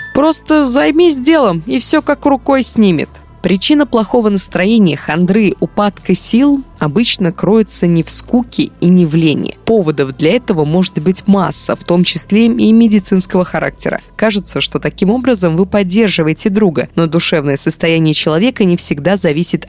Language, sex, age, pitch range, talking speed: Russian, female, 20-39, 165-225 Hz, 150 wpm